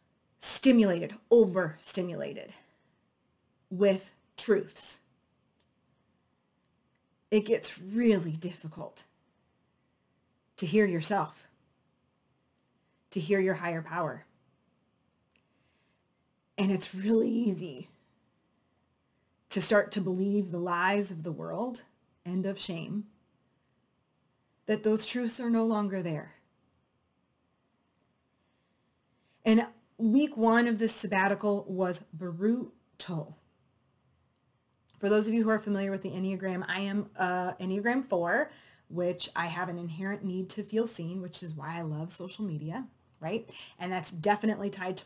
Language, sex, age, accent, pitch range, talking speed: English, female, 30-49, American, 170-205 Hz, 115 wpm